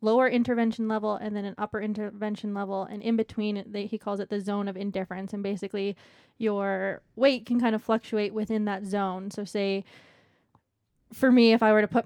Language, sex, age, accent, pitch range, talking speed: English, female, 20-39, American, 200-220 Hz, 195 wpm